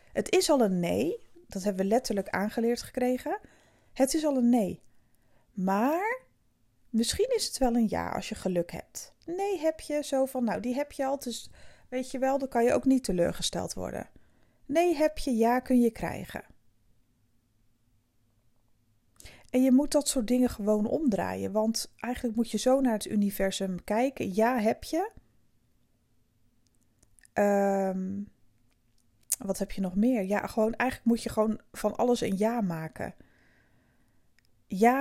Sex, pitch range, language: female, 190-255 Hz, Dutch